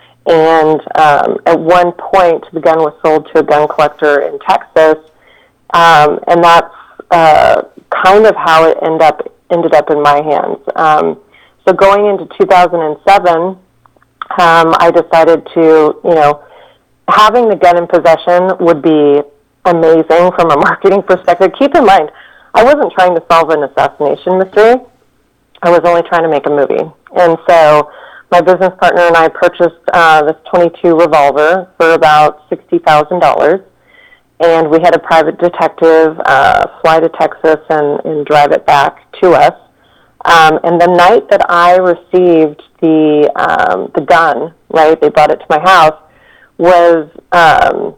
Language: English